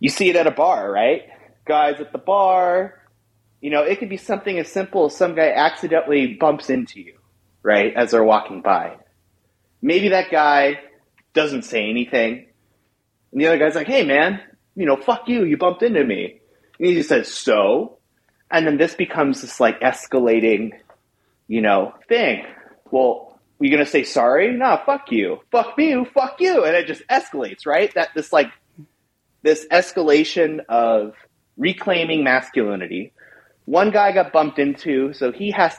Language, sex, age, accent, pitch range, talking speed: English, male, 30-49, American, 135-205 Hz, 170 wpm